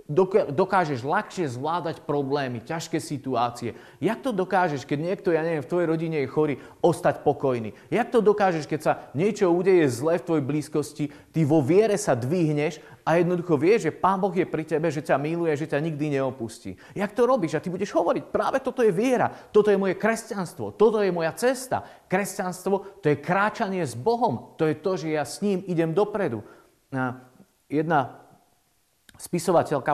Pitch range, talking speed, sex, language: 145-190 Hz, 175 wpm, male, Slovak